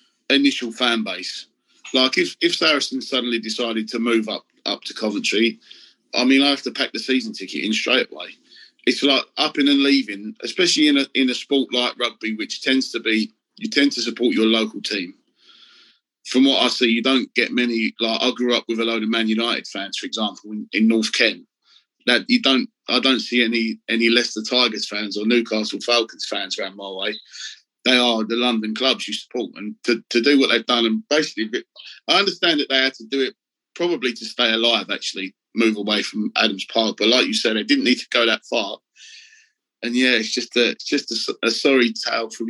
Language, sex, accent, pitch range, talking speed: English, male, British, 110-130 Hz, 215 wpm